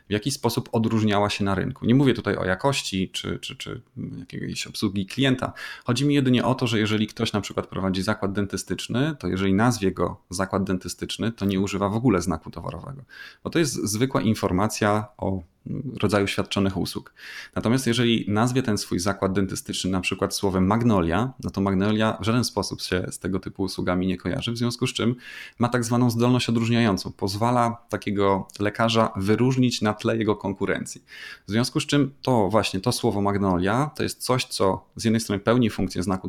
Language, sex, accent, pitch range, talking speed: Polish, male, native, 95-120 Hz, 185 wpm